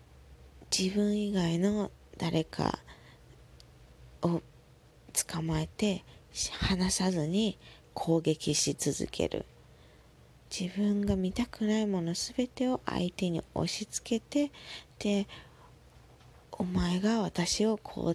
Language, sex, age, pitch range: Japanese, female, 20-39, 160-230 Hz